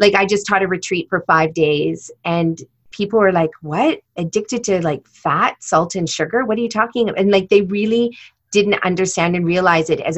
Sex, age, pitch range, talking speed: female, 30-49, 155-195 Hz, 210 wpm